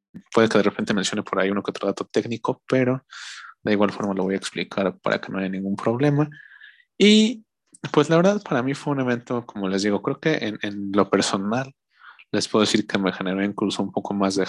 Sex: male